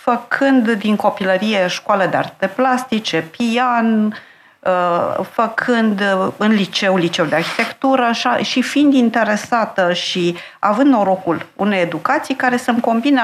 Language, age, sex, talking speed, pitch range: Romanian, 50-69, female, 120 wpm, 180-255 Hz